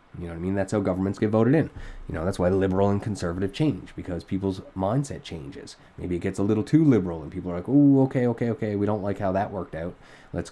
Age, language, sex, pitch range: 20-39, English, male, 90-120 Hz